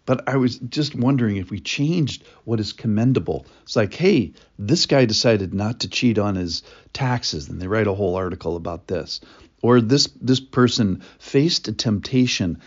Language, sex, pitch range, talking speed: English, male, 95-125 Hz, 180 wpm